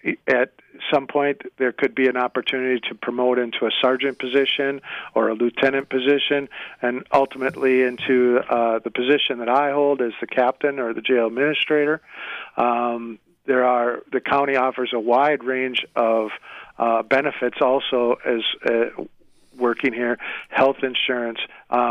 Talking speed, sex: 145 wpm, male